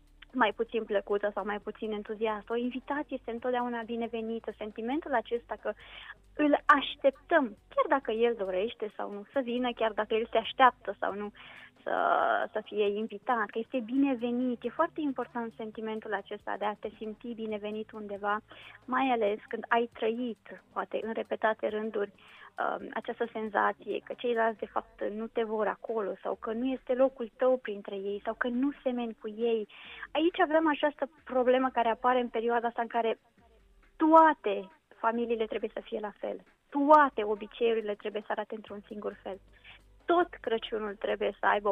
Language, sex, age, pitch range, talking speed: Romanian, female, 20-39, 215-260 Hz, 165 wpm